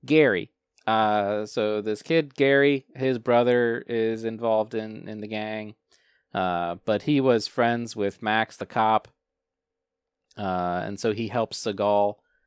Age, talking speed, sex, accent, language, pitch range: 20-39, 140 wpm, male, American, English, 105-130 Hz